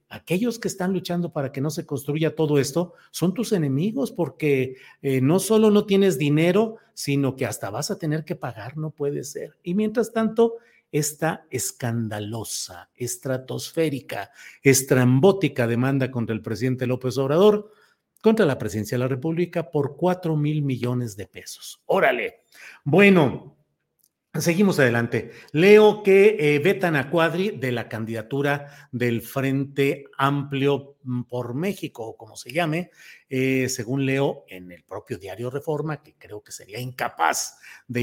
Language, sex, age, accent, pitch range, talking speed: Spanish, male, 50-69, Mexican, 125-175 Hz, 145 wpm